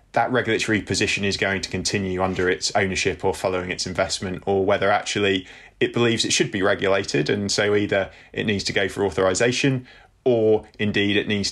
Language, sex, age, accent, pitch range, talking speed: English, male, 20-39, British, 100-120 Hz, 190 wpm